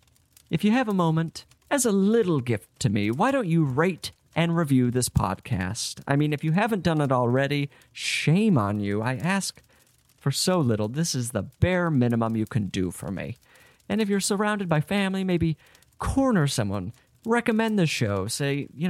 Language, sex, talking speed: English, male, 185 wpm